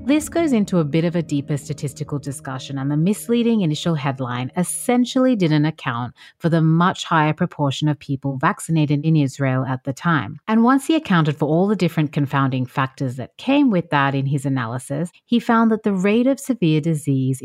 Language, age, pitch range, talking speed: English, 30-49, 140-185 Hz, 195 wpm